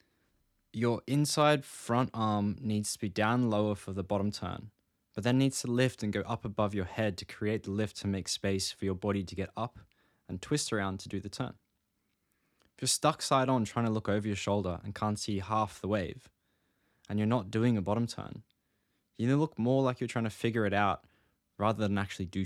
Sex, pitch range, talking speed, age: male, 100-120 Hz, 220 wpm, 20-39